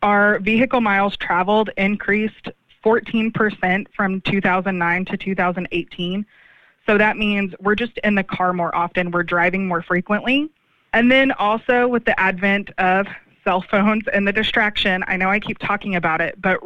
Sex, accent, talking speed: female, American, 160 wpm